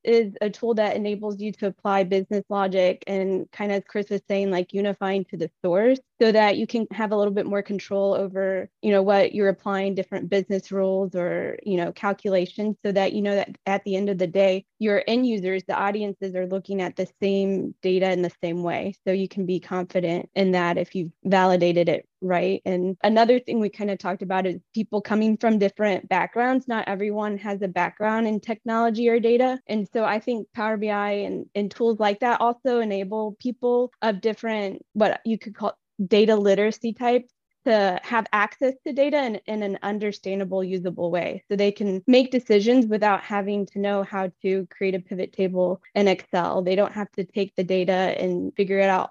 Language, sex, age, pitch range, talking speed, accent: English, female, 20-39, 190-215 Hz, 205 wpm, American